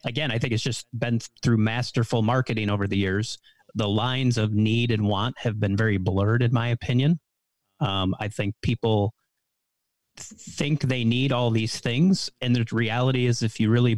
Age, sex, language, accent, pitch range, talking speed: 30-49, male, English, American, 110-130 Hz, 180 wpm